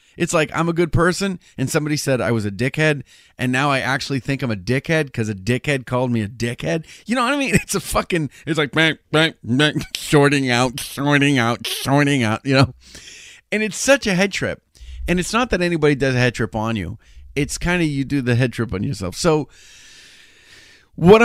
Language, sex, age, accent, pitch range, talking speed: English, male, 30-49, American, 105-155 Hz, 220 wpm